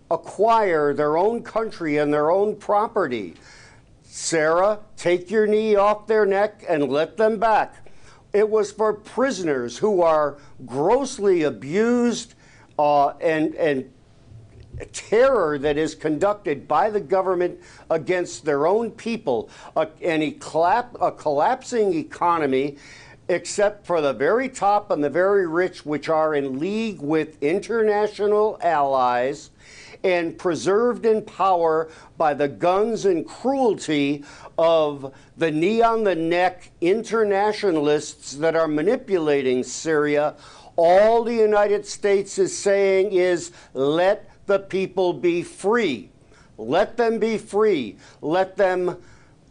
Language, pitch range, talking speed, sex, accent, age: English, 150-210 Hz, 120 wpm, male, American, 60-79